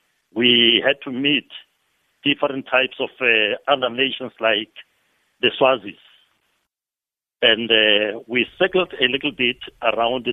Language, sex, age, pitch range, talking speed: English, male, 60-79, 120-140 Hz, 120 wpm